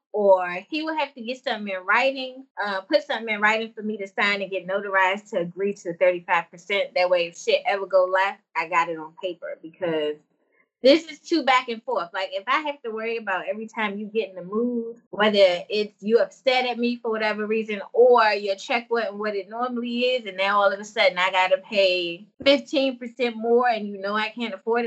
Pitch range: 195-250 Hz